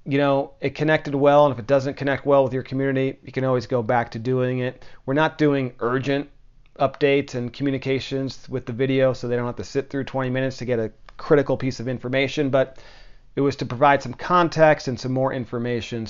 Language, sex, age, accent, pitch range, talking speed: English, male, 40-59, American, 120-140 Hz, 220 wpm